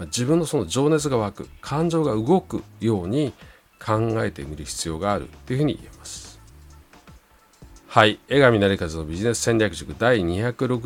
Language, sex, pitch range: Japanese, male, 80-120 Hz